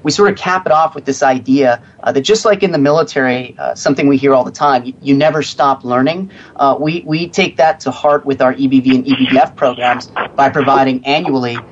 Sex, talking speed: male, 225 wpm